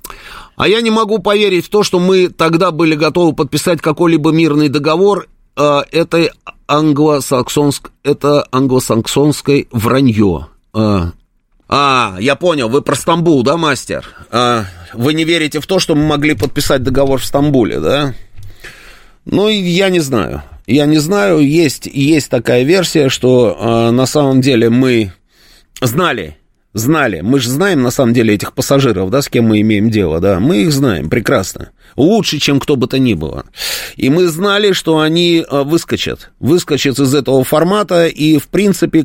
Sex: male